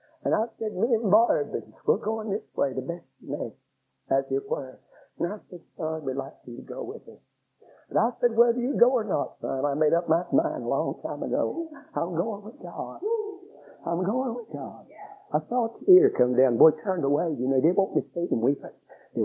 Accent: American